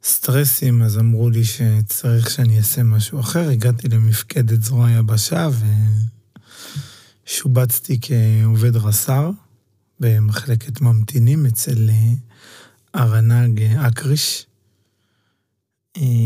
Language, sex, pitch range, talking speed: Hebrew, male, 110-130 Hz, 80 wpm